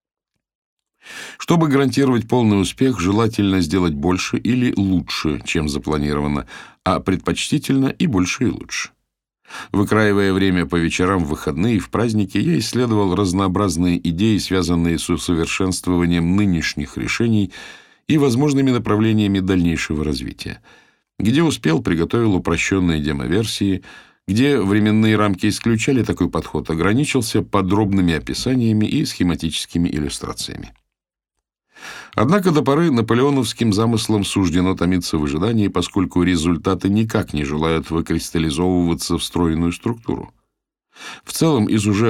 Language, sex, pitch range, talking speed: Russian, male, 85-110 Hz, 110 wpm